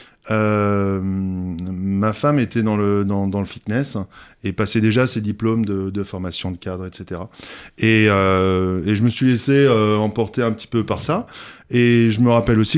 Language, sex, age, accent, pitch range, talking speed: French, male, 20-39, French, 105-130 Hz, 190 wpm